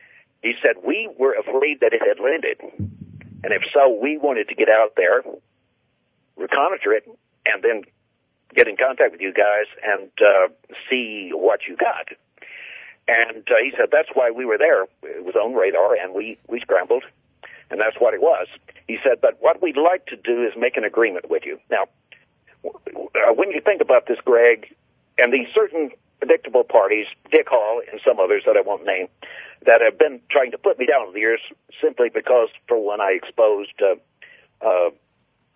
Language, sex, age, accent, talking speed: English, male, 50-69, American, 190 wpm